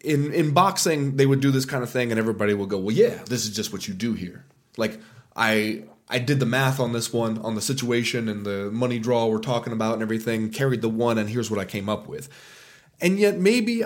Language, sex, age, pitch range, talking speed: English, male, 20-39, 115-145 Hz, 245 wpm